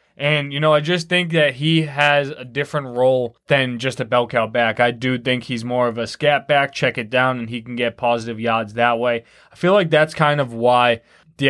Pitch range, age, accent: 120-140 Hz, 20-39, American